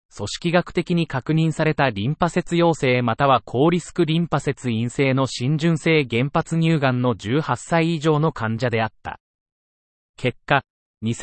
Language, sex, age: Japanese, male, 30-49